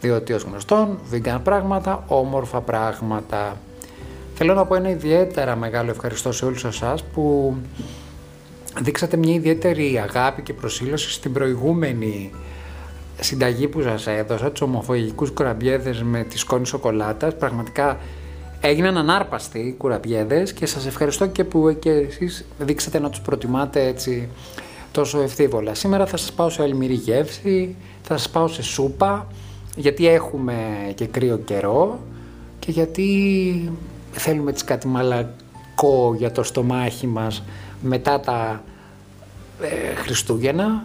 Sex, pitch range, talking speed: male, 110-155 Hz, 125 wpm